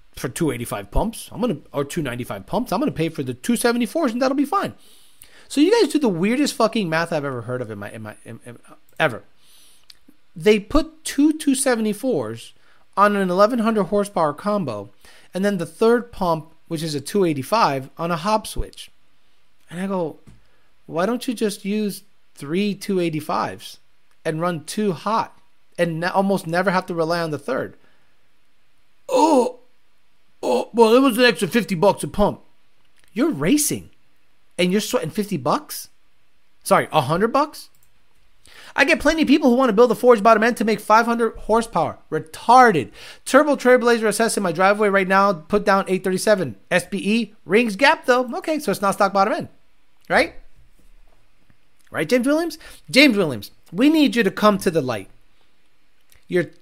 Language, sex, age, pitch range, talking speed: English, male, 30-49, 160-240 Hz, 165 wpm